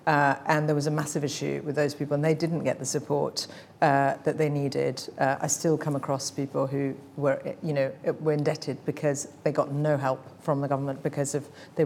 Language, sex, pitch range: English, female, 140-160 Hz